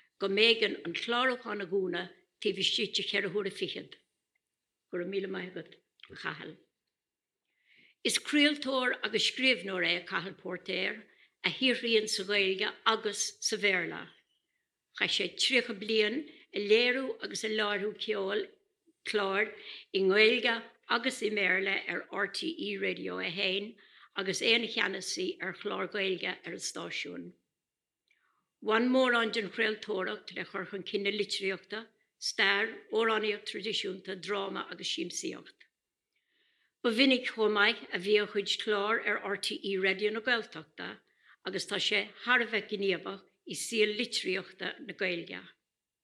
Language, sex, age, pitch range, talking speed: English, female, 60-79, 195-230 Hz, 115 wpm